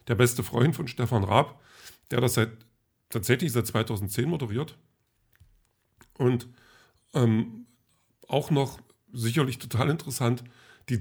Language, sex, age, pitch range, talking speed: German, male, 40-59, 115-135 Hz, 115 wpm